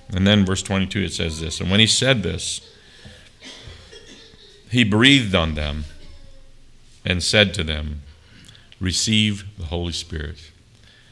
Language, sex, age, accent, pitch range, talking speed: English, male, 50-69, American, 85-105 Hz, 130 wpm